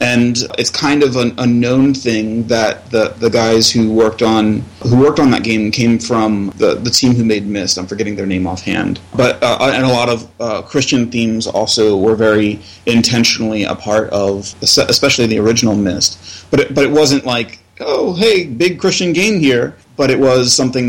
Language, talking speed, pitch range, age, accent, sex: English, 200 wpm, 110-130 Hz, 30-49, American, male